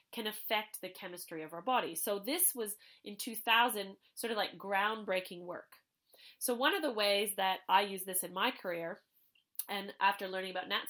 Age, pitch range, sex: 30-49, 195-260 Hz, female